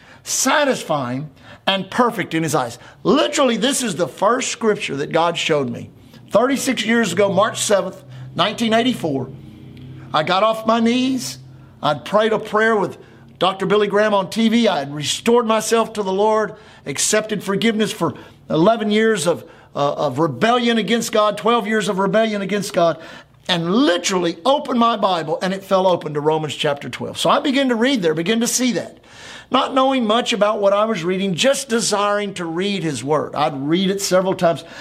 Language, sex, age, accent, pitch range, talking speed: English, male, 50-69, American, 165-230 Hz, 180 wpm